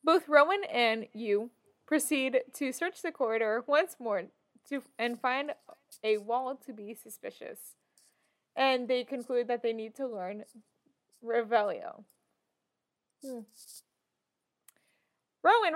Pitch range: 225-295 Hz